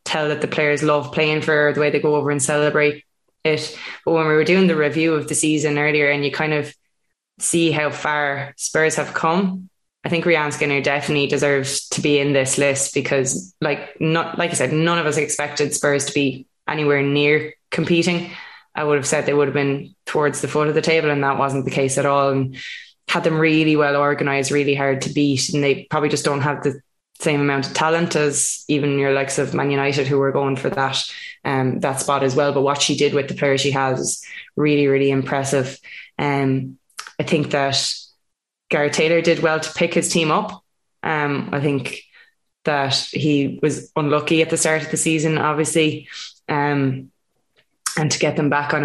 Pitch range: 140-155 Hz